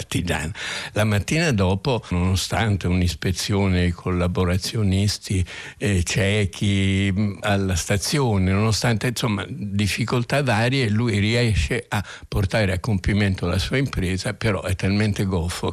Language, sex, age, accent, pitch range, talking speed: Italian, male, 60-79, native, 90-105 Hz, 105 wpm